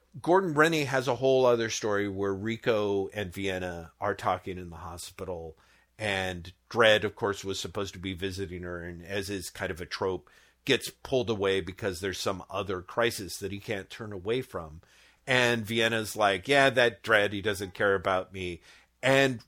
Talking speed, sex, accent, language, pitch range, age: 180 wpm, male, American, English, 95-130 Hz, 50-69